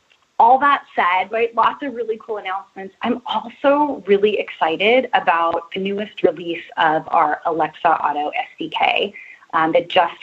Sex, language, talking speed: female, English, 145 wpm